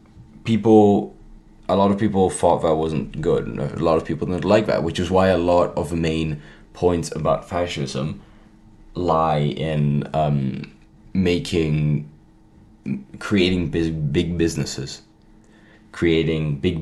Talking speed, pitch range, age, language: 130 wpm, 75-90 Hz, 20-39, English